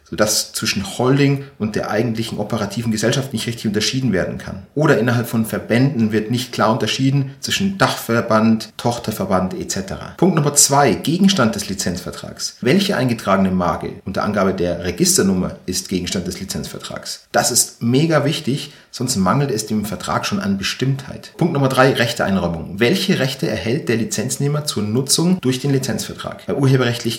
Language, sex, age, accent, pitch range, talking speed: German, male, 30-49, German, 105-140 Hz, 155 wpm